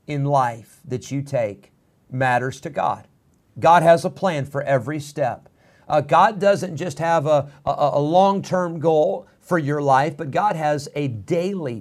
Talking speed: 170 wpm